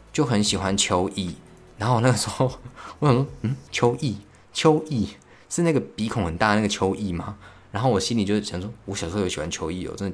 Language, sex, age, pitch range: Chinese, male, 20-39, 90-110 Hz